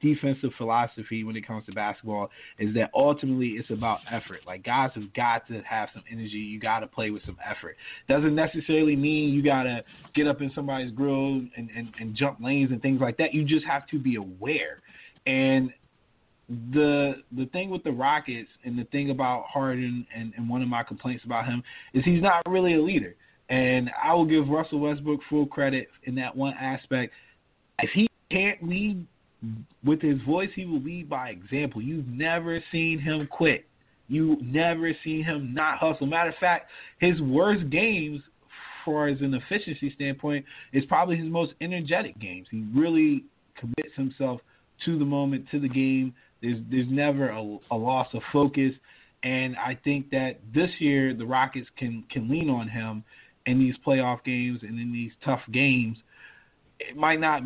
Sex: male